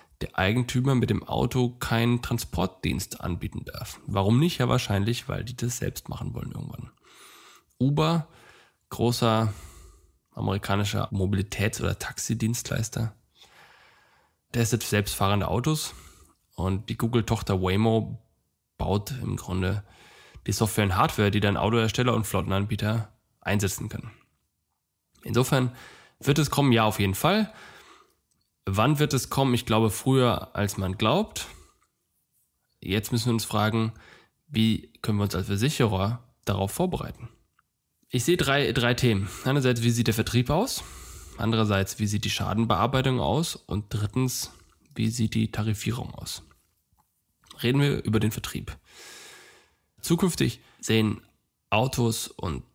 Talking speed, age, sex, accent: 130 wpm, 10-29, male, German